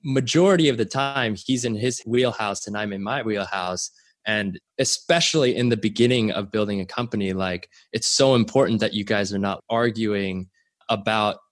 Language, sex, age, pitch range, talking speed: English, male, 20-39, 100-125 Hz, 170 wpm